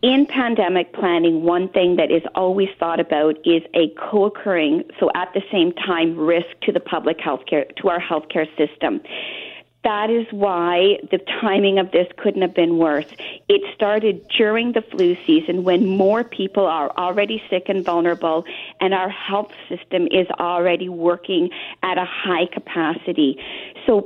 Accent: American